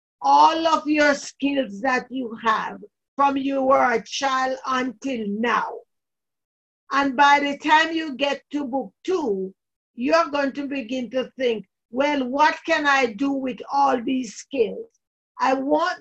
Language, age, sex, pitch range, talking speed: English, 50-69, female, 250-295 Hz, 150 wpm